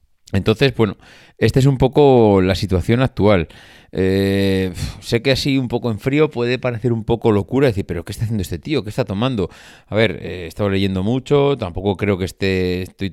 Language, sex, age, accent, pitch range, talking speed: Spanish, male, 30-49, Spanish, 90-105 Hz, 200 wpm